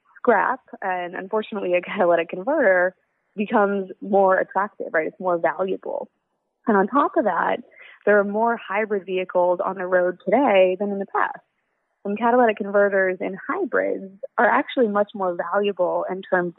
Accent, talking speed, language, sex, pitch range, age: American, 155 wpm, English, female, 185-240 Hz, 20-39